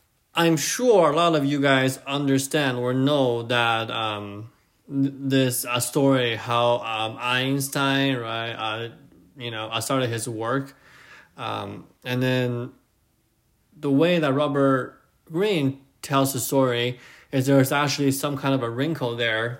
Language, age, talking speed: English, 20-39, 140 wpm